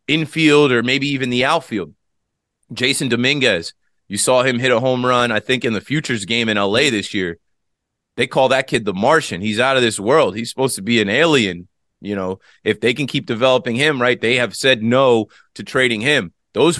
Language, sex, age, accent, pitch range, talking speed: English, male, 30-49, American, 105-125 Hz, 210 wpm